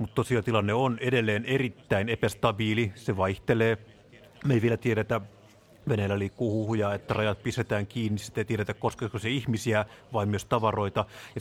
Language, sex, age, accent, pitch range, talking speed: Finnish, male, 30-49, native, 105-125 Hz, 155 wpm